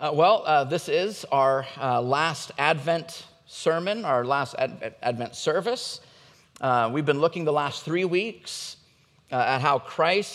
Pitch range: 125-150 Hz